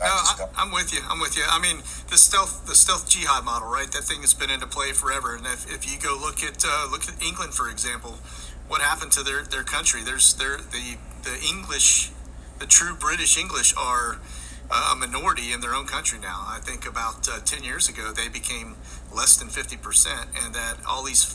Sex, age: male, 40-59